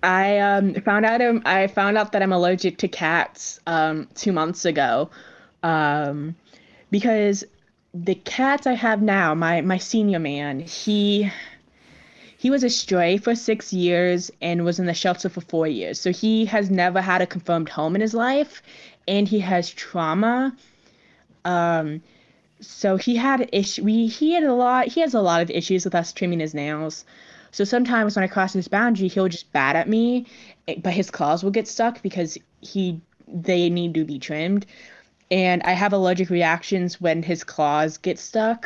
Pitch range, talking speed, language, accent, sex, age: 170-220 Hz, 180 wpm, English, American, female, 20-39